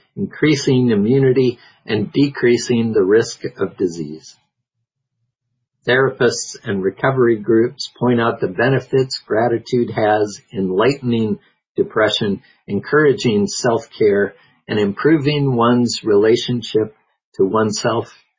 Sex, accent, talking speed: male, American, 100 wpm